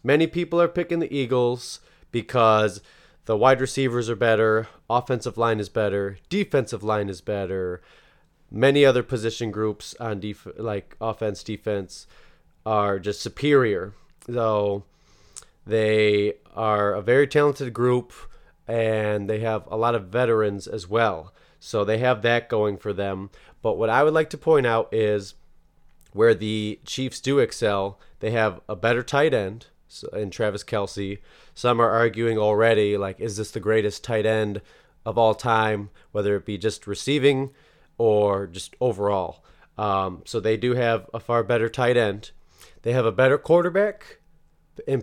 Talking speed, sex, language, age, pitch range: 155 wpm, male, English, 30-49, 105-125 Hz